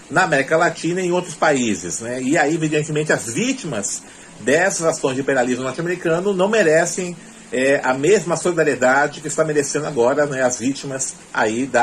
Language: Portuguese